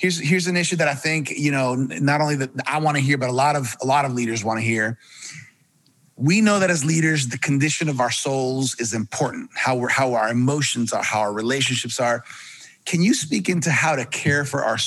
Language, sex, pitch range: English, male, 120-150 Hz